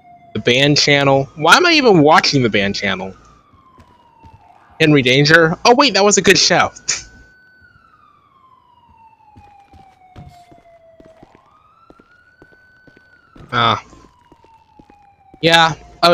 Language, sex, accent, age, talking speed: English, male, American, 20-39, 80 wpm